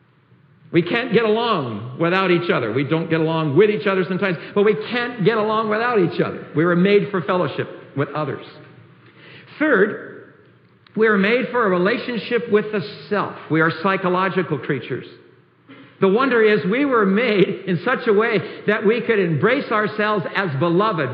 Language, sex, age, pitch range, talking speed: English, male, 60-79, 160-210 Hz, 175 wpm